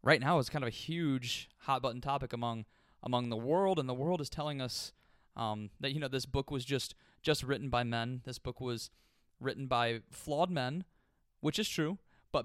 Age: 20-39